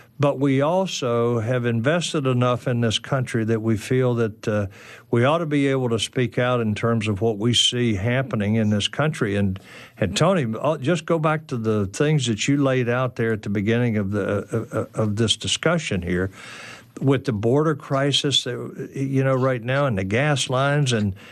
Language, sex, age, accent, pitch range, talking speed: English, male, 50-69, American, 110-140 Hz, 200 wpm